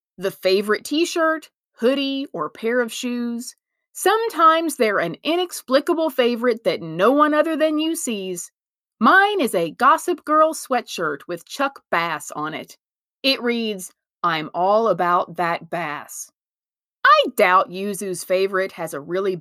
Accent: American